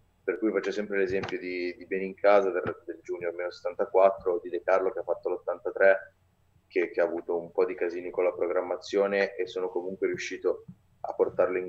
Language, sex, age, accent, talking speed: Italian, male, 20-39, native, 200 wpm